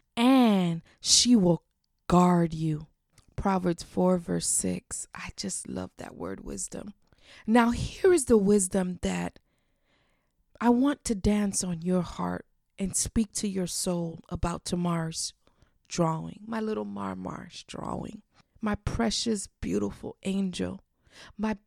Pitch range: 175-225 Hz